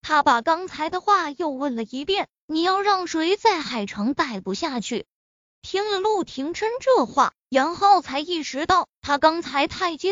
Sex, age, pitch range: female, 20-39, 250-350 Hz